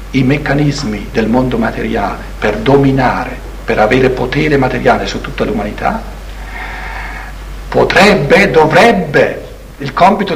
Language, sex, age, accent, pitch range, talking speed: Italian, male, 60-79, native, 125-190 Hz, 105 wpm